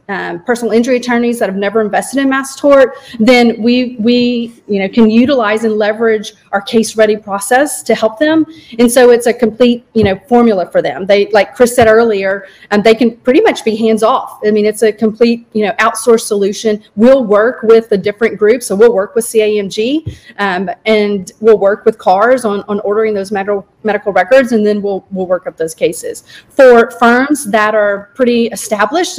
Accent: American